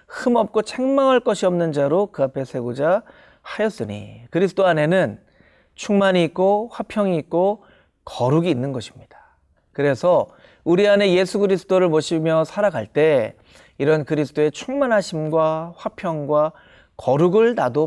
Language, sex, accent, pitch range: Korean, male, native, 140-205 Hz